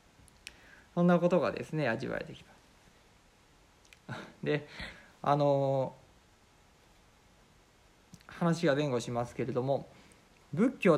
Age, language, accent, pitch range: 50-69, Japanese, native, 105-175 Hz